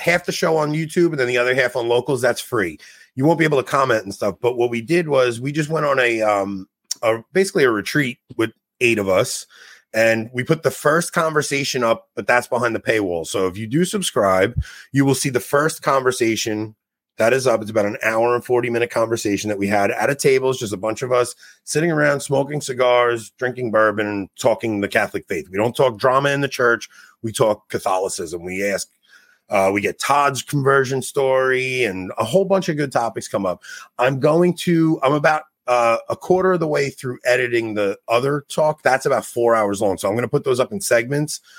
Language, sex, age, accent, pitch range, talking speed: English, male, 30-49, American, 110-150 Hz, 220 wpm